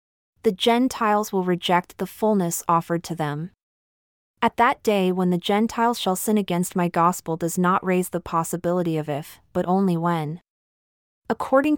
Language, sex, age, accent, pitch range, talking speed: English, female, 20-39, American, 170-210 Hz, 160 wpm